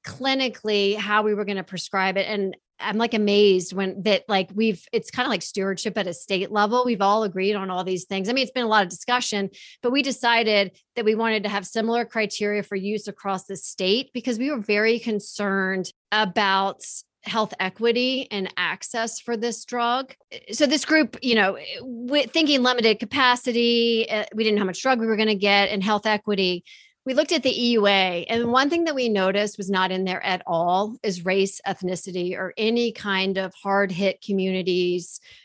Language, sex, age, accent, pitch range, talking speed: English, female, 40-59, American, 195-235 Hz, 195 wpm